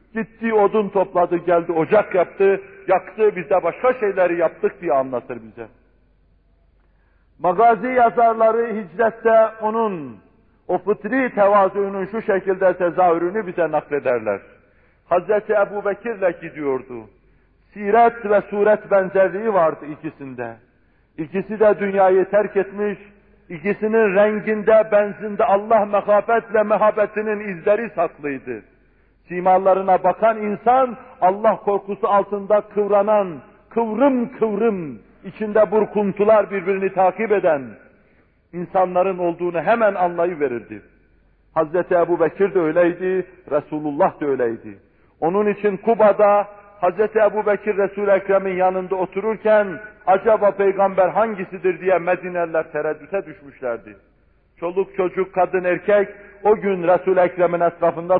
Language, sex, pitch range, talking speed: Turkish, male, 175-210 Hz, 105 wpm